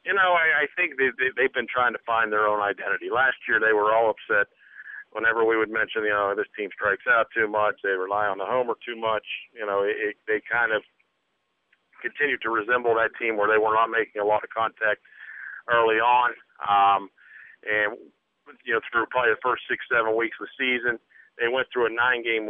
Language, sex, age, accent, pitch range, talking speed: English, male, 50-69, American, 105-140 Hz, 210 wpm